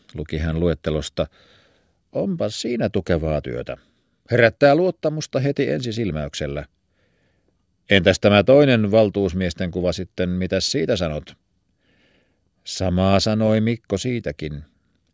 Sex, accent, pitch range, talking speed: male, native, 85-110 Hz, 100 wpm